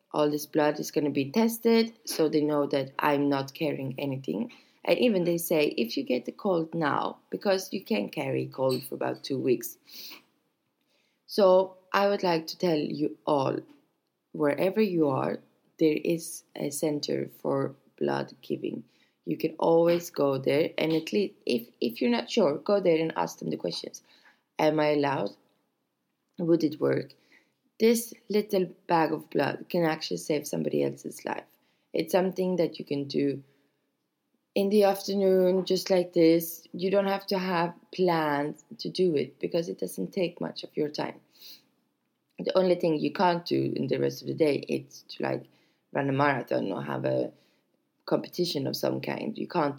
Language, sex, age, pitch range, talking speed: English, female, 20-39, 145-190 Hz, 175 wpm